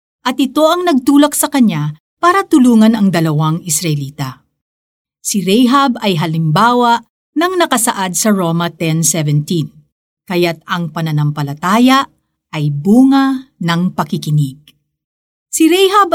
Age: 50-69